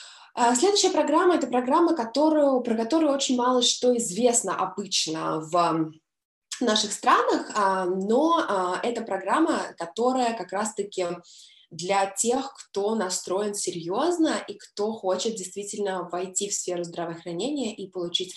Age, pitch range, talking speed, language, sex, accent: 20-39, 175-240 Hz, 115 wpm, Russian, female, native